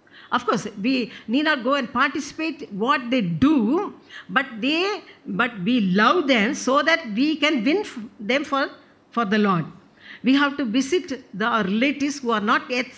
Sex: female